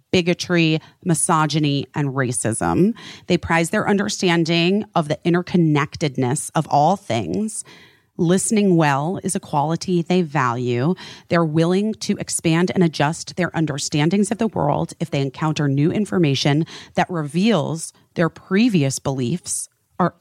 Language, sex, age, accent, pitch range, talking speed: English, female, 30-49, American, 145-180 Hz, 130 wpm